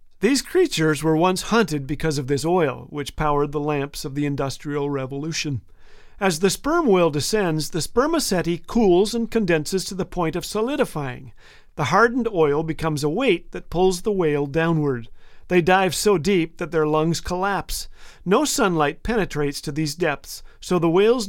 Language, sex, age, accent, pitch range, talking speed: English, male, 40-59, American, 150-195 Hz, 170 wpm